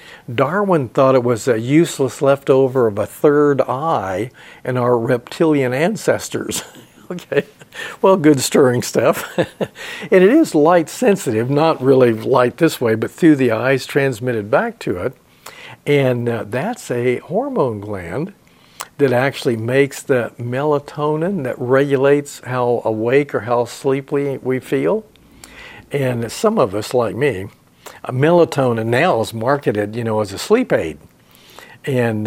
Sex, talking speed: male, 140 wpm